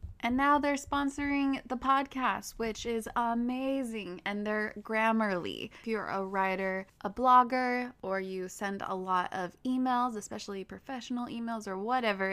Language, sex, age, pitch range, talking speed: English, female, 20-39, 195-245 Hz, 145 wpm